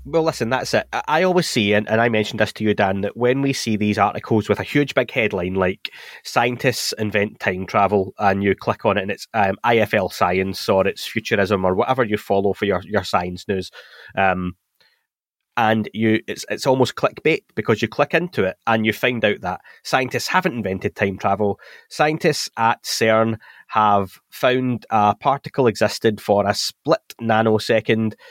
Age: 20-39